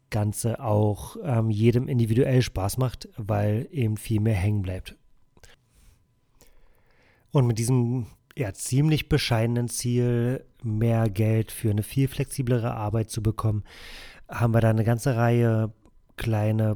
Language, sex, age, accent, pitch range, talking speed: German, male, 30-49, German, 110-130 Hz, 130 wpm